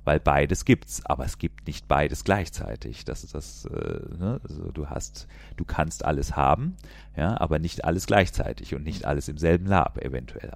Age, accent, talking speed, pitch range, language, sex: 40-59, German, 170 wpm, 75-95 Hz, German, male